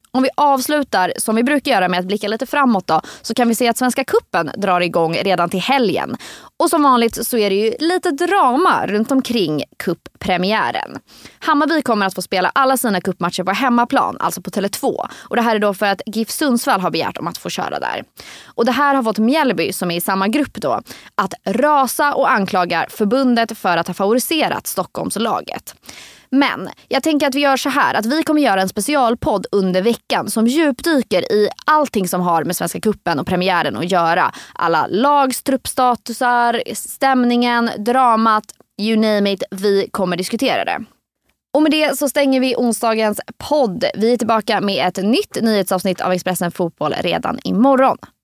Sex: female